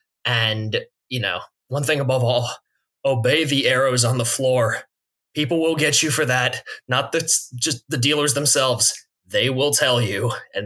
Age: 20-39